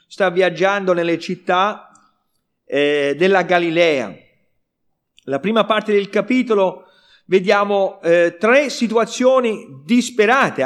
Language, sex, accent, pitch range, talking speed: Italian, male, native, 180-250 Hz, 95 wpm